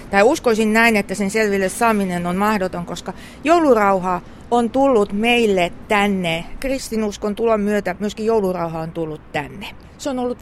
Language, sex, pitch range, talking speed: Finnish, female, 200-255 Hz, 150 wpm